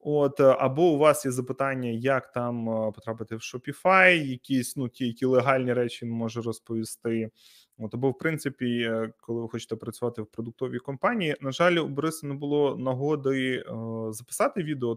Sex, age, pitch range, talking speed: male, 20-39, 115-145 Hz, 165 wpm